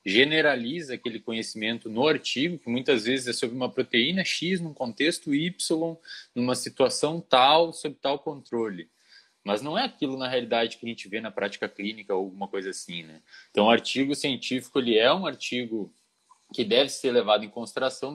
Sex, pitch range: male, 100-130 Hz